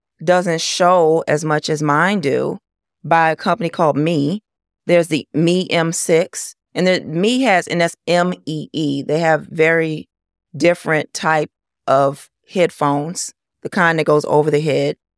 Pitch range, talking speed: 140-175 Hz, 145 wpm